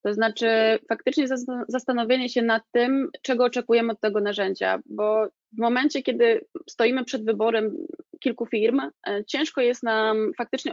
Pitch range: 205-245 Hz